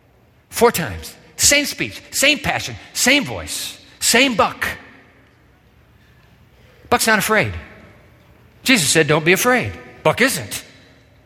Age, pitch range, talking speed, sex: 50-69, 140-220 Hz, 105 wpm, male